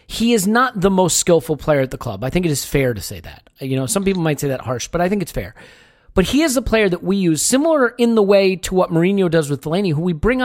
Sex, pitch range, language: male, 150-190 Hz, English